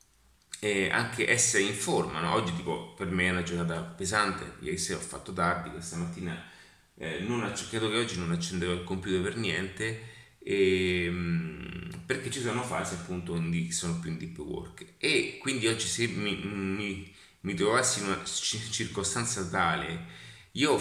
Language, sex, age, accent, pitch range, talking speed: Italian, male, 30-49, native, 85-110 Hz, 175 wpm